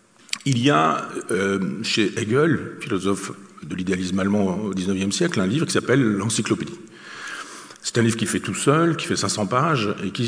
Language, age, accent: French, 50-69, French